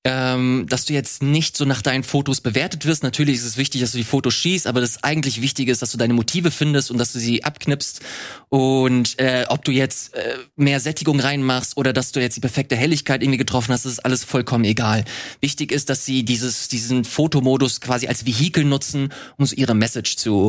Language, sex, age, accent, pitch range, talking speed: German, male, 20-39, German, 125-145 Hz, 215 wpm